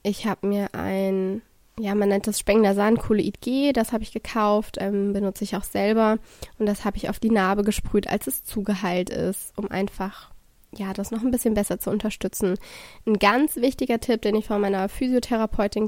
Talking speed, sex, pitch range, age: 195 wpm, female, 200-230 Hz, 20-39